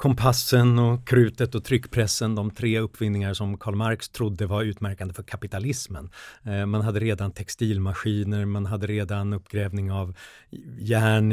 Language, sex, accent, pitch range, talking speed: Swedish, male, native, 100-125 Hz, 140 wpm